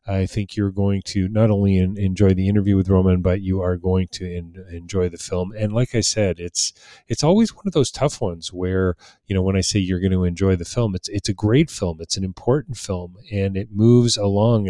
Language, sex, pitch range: English, male, 90-105 Hz